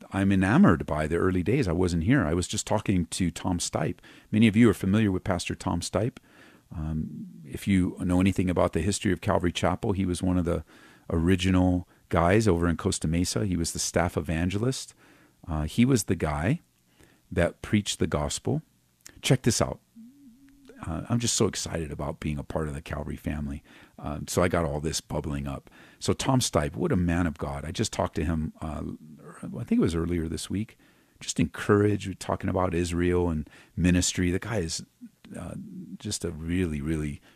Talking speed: 195 wpm